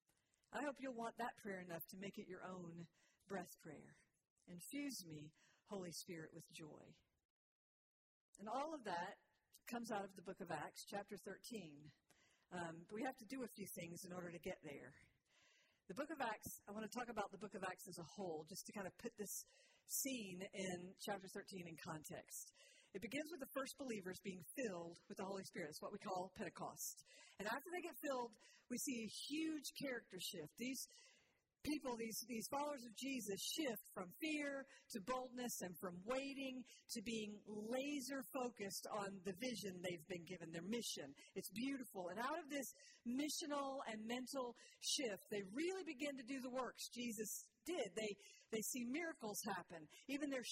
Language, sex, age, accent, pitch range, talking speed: English, female, 50-69, American, 190-270 Hz, 185 wpm